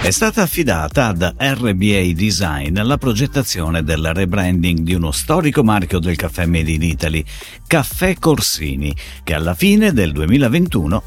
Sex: male